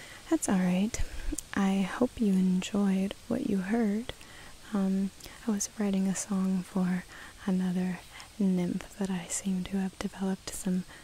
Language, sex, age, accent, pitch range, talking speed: English, female, 20-39, American, 185-215 Hz, 135 wpm